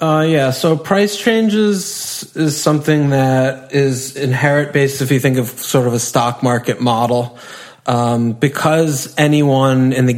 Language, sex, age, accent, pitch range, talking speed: English, male, 20-39, American, 120-135 Hz, 155 wpm